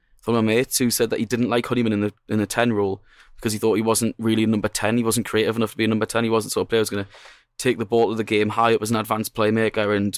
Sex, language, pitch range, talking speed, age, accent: male, English, 110-125 Hz, 330 wpm, 20-39, British